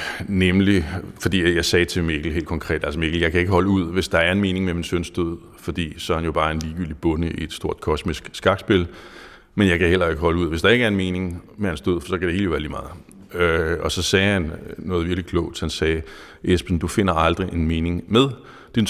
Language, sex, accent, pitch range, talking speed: Danish, male, native, 80-95 Hz, 255 wpm